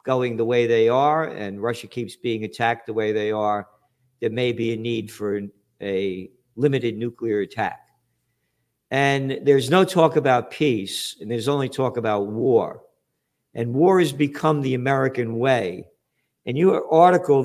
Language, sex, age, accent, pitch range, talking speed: English, male, 50-69, American, 115-175 Hz, 160 wpm